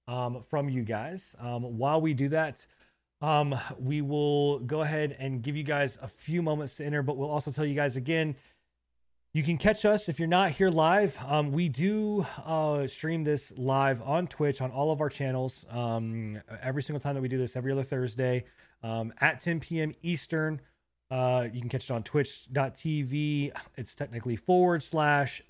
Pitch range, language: 120-155 Hz, English